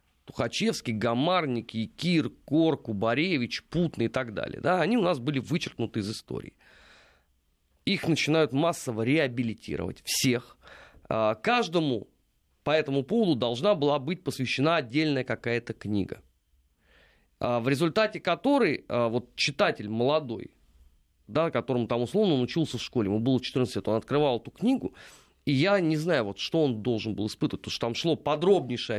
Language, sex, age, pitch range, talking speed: Russian, male, 30-49, 115-170 Hz, 145 wpm